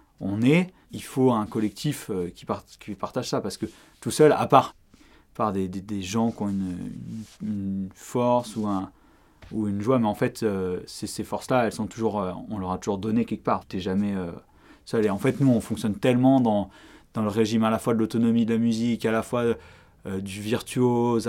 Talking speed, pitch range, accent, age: 220 wpm, 105-130 Hz, French, 30-49